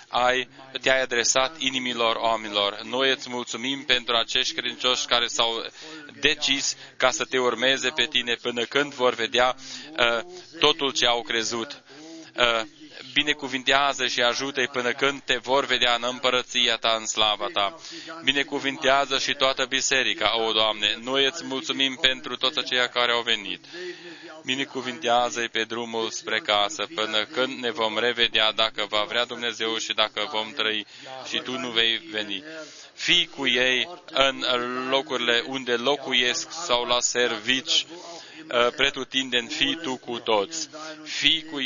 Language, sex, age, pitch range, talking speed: Romanian, male, 20-39, 115-135 Hz, 145 wpm